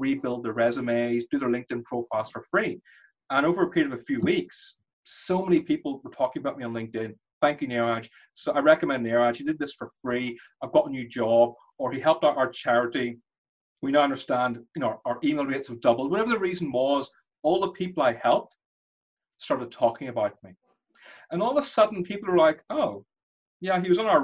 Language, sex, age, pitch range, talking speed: English, male, 30-49, 125-190 Hz, 215 wpm